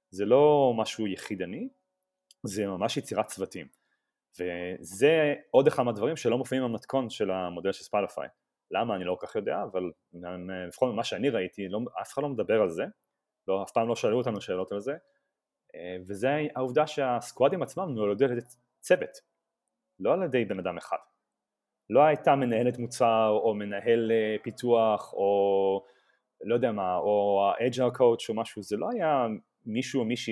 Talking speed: 160 wpm